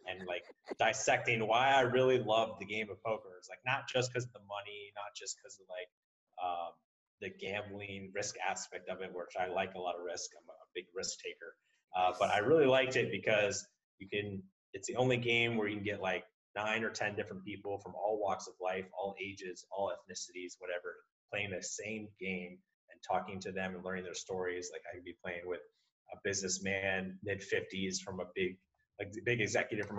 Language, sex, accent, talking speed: English, male, American, 210 wpm